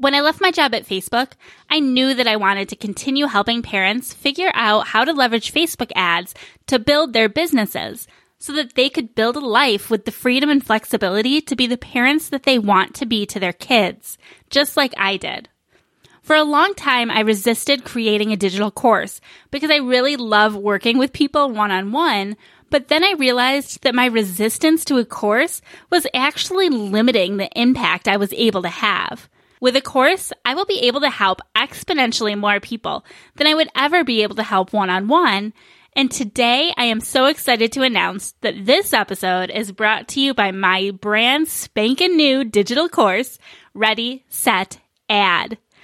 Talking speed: 180 wpm